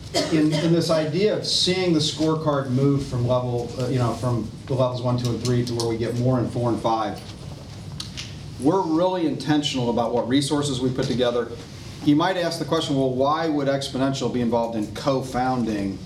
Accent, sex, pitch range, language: American, male, 115-145 Hz, English